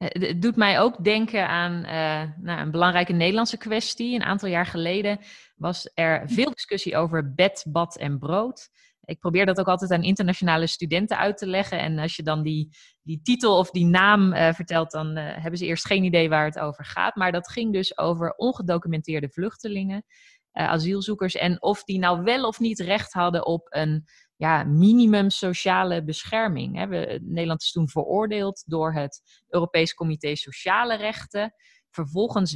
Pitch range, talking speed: 165-210 Hz, 170 wpm